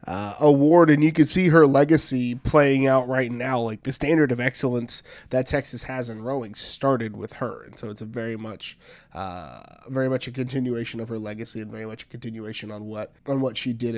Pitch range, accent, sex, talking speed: 125-160 Hz, American, male, 215 wpm